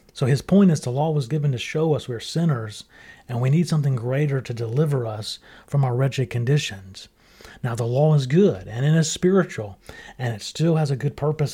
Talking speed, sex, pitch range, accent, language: 215 wpm, male, 130-160 Hz, American, English